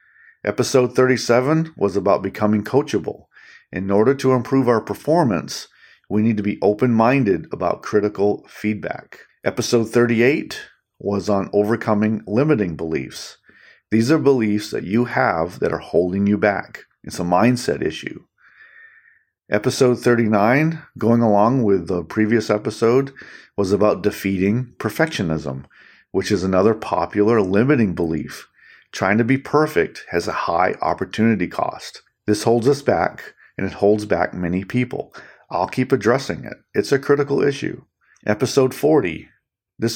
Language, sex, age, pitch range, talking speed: English, male, 40-59, 100-130 Hz, 135 wpm